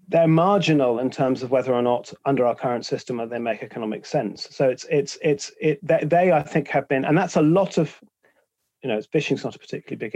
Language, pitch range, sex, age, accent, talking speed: English, 130-165 Hz, male, 40-59, British, 235 wpm